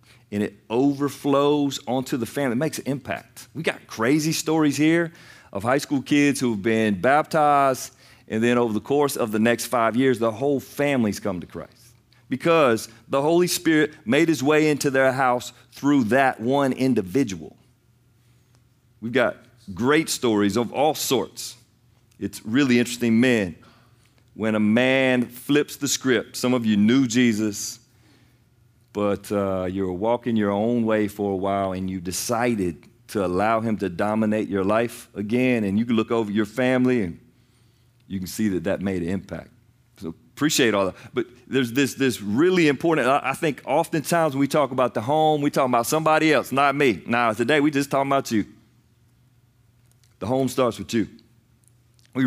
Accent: American